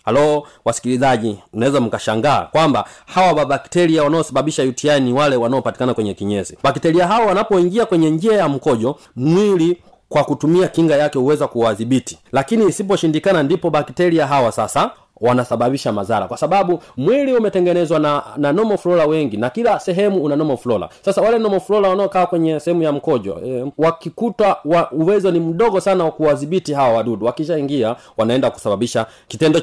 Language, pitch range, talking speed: Swahili, 125-170 Hz, 150 wpm